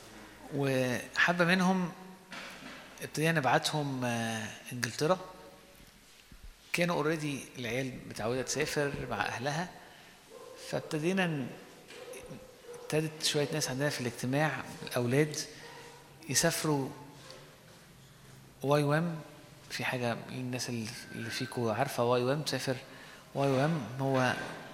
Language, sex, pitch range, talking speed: Arabic, male, 120-155 Hz, 85 wpm